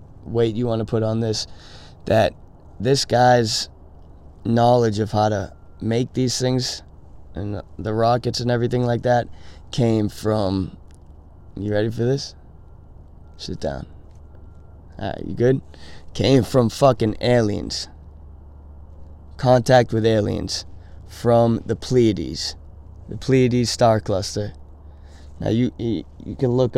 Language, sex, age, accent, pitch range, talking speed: English, male, 20-39, American, 75-115 Hz, 125 wpm